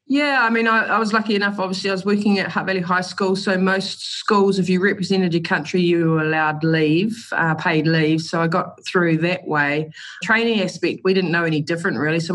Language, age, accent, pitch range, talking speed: English, 20-39, Australian, 155-185 Hz, 230 wpm